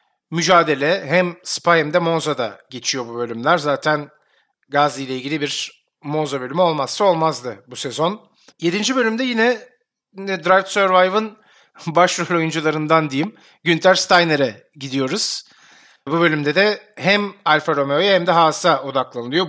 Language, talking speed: Turkish, 125 wpm